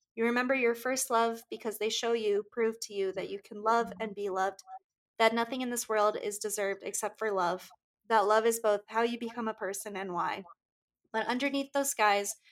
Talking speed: 210 wpm